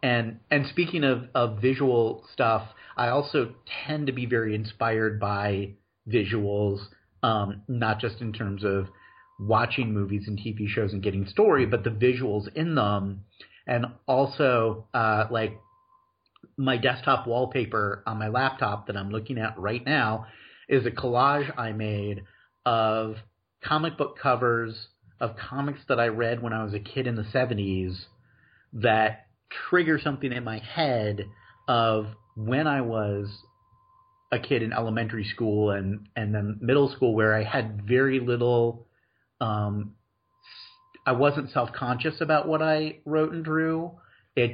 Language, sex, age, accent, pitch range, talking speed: English, male, 40-59, American, 105-135 Hz, 145 wpm